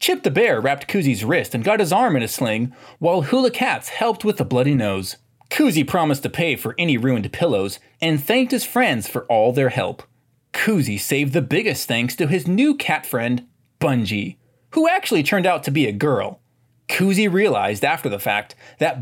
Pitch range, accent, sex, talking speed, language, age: 125-205 Hz, American, male, 195 wpm, English, 20-39